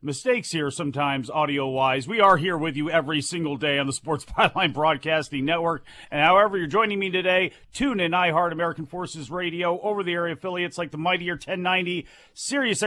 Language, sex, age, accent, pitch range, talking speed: English, male, 40-59, American, 140-190 Hz, 180 wpm